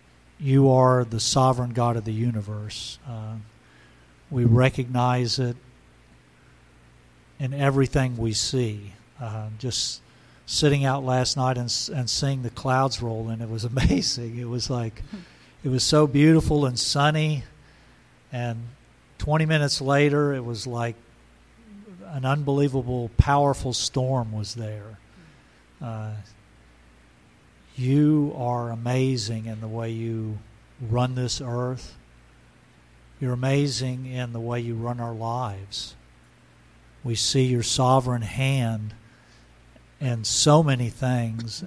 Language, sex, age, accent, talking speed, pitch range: English, male, 50-69, American, 120 wpm, 105-130 Hz